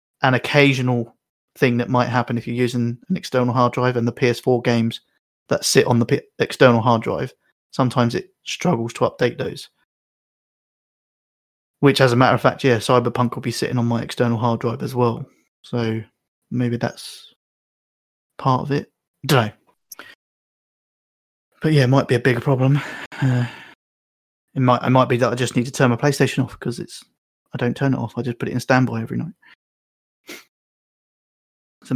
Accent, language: British, English